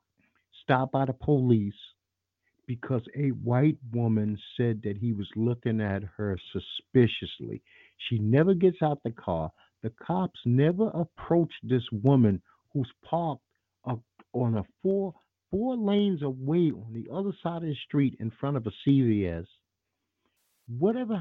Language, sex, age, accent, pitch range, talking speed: English, male, 50-69, American, 110-150 Hz, 140 wpm